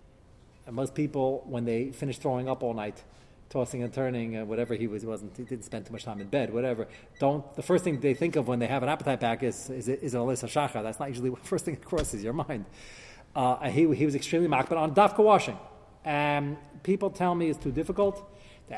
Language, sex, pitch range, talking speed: English, male, 125-160 Hz, 235 wpm